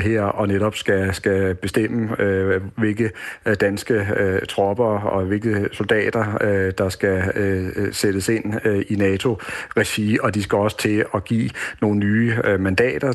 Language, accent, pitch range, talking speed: Danish, native, 100-115 Hz, 155 wpm